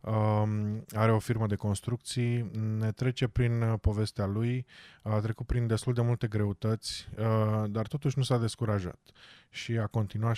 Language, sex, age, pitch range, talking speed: Romanian, male, 20-39, 100-120 Hz, 140 wpm